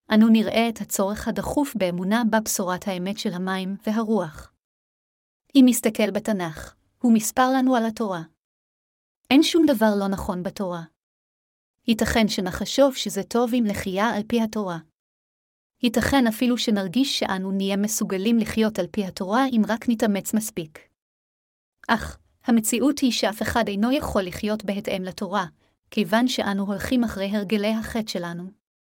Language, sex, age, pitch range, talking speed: Hebrew, female, 30-49, 195-235 Hz, 135 wpm